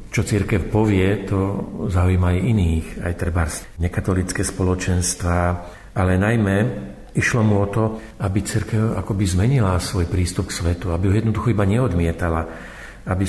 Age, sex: 50-69, male